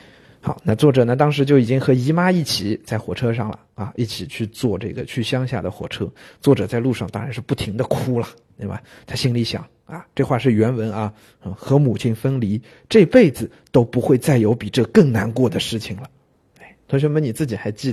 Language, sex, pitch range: Chinese, male, 110-140 Hz